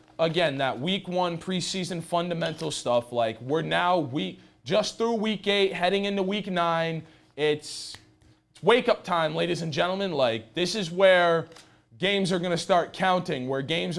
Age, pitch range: 20-39, 150-195 Hz